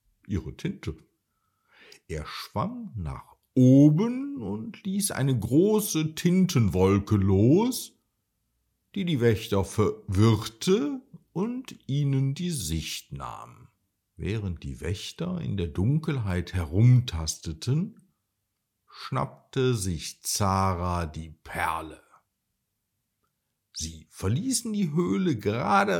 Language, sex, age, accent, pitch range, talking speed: German, male, 60-79, German, 95-155 Hz, 90 wpm